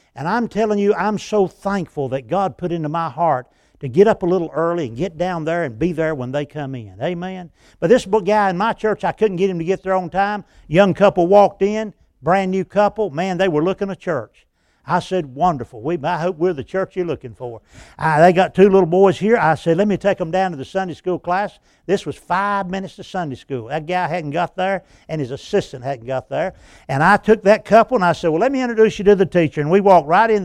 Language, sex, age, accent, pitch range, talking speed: English, male, 60-79, American, 160-215 Hz, 255 wpm